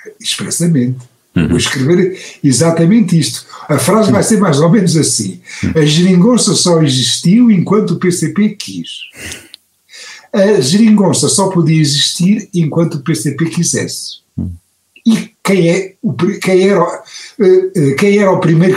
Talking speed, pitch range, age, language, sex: 125 wpm, 125-195 Hz, 60-79, Portuguese, male